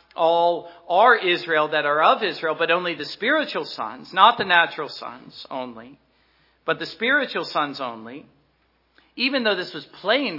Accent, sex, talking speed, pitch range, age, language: American, male, 155 wpm, 155-240 Hz, 50-69, English